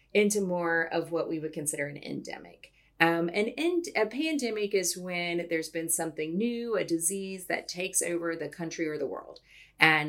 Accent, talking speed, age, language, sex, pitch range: American, 180 wpm, 30-49, English, female, 165-225 Hz